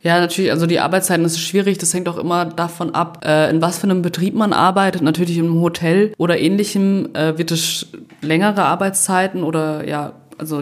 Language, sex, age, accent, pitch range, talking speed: German, female, 20-39, German, 160-190 Hz, 185 wpm